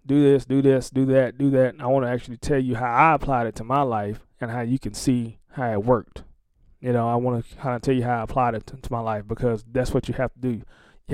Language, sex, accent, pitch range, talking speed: English, male, American, 115-140 Hz, 290 wpm